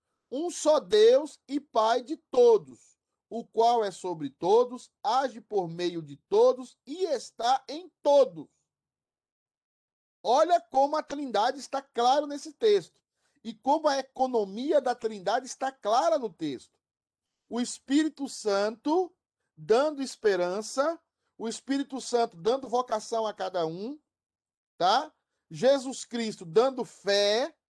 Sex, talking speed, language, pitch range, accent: male, 120 wpm, Portuguese, 200-285 Hz, Brazilian